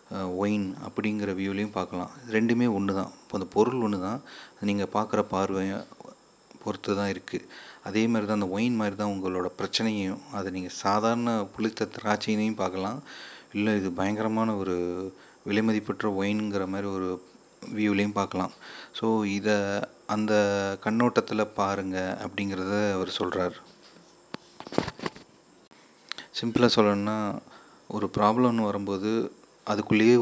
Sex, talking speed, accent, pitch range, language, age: male, 110 wpm, native, 100-110 Hz, Tamil, 30-49